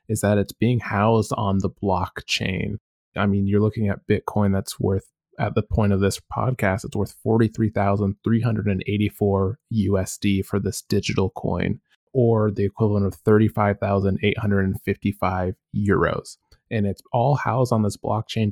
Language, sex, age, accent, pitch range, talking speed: English, male, 20-39, American, 95-115 Hz, 140 wpm